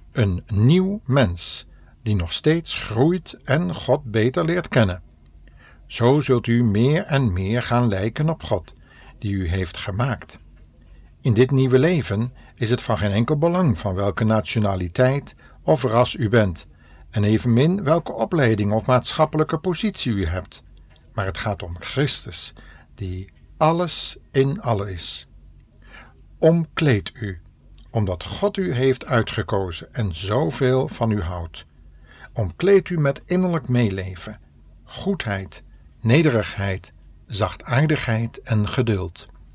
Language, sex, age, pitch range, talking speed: Dutch, male, 60-79, 90-130 Hz, 125 wpm